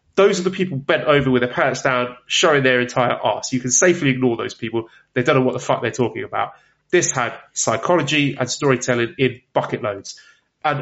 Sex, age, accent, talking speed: male, 30-49, British, 210 wpm